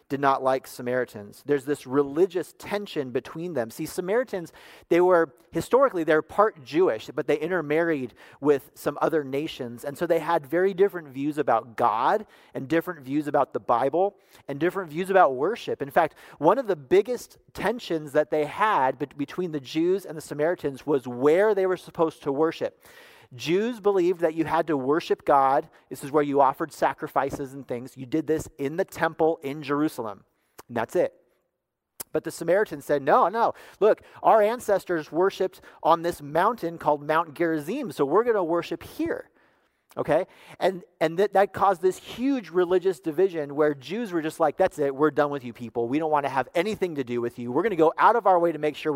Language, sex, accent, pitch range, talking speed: English, male, American, 145-180 Hz, 195 wpm